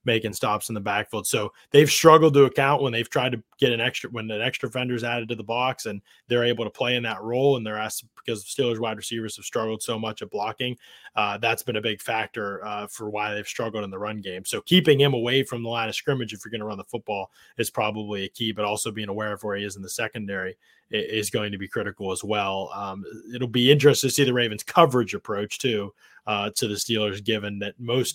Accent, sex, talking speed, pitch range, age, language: American, male, 250 wpm, 105-140 Hz, 20-39, English